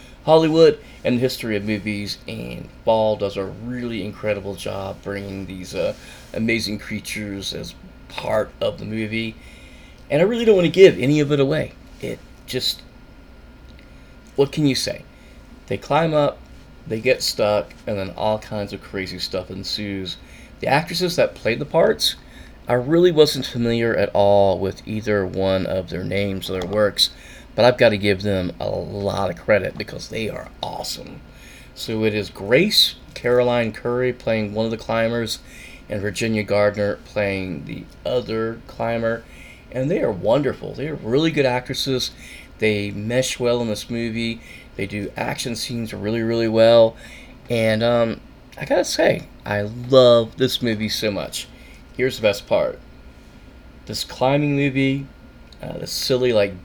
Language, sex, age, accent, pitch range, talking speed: English, male, 30-49, American, 100-125 Hz, 160 wpm